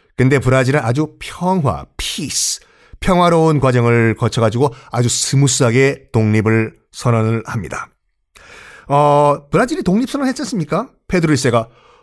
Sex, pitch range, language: male, 120-180 Hz, Korean